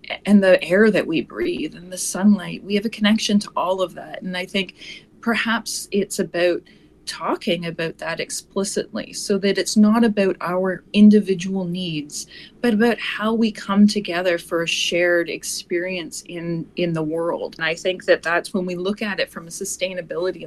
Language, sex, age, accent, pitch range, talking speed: English, female, 30-49, American, 175-210 Hz, 180 wpm